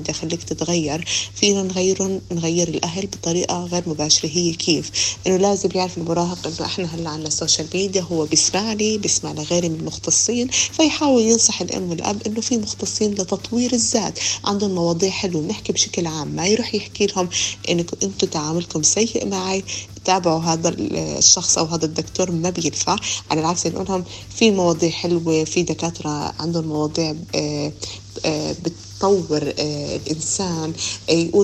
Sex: female